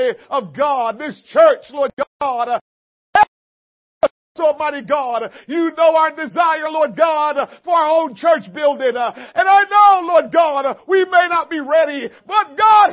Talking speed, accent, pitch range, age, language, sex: 150 wpm, American, 260-340 Hz, 50-69, English, male